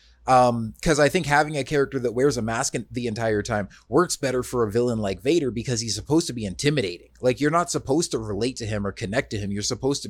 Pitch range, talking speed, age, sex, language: 95-125 Hz, 250 wpm, 30-49, male, English